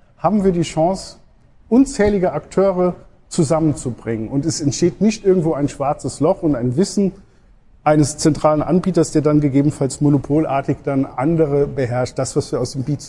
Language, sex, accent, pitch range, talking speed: German, male, German, 135-170 Hz, 150 wpm